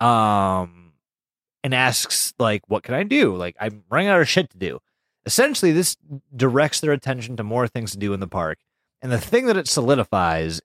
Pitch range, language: 105-150 Hz, English